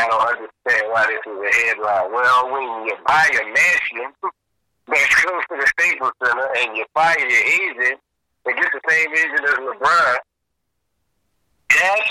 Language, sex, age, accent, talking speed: English, male, 50-69, American, 165 wpm